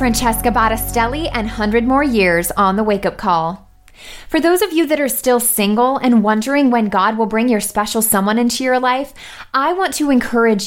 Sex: female